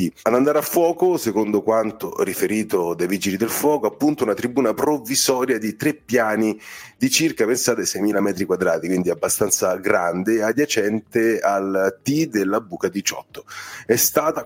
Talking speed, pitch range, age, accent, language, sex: 145 wpm, 100-145 Hz, 30-49, native, Italian, male